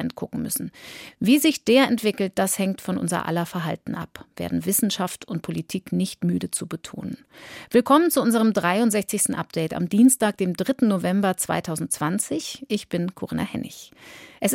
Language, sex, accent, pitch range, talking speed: German, female, German, 180-235 Hz, 155 wpm